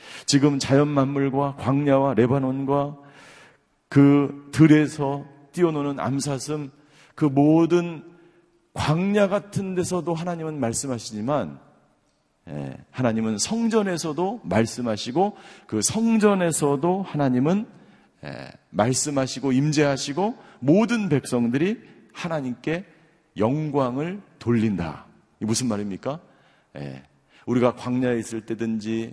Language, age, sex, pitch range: Korean, 40-59, male, 120-155 Hz